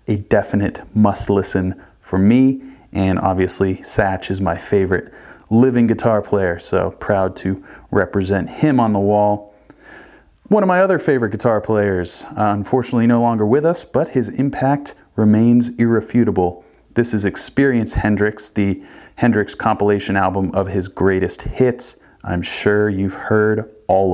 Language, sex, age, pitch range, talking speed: English, male, 30-49, 95-115 Hz, 145 wpm